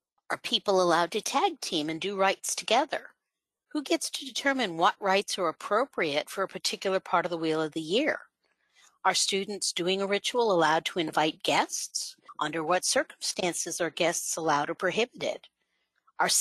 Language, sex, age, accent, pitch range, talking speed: English, female, 50-69, American, 175-220 Hz, 170 wpm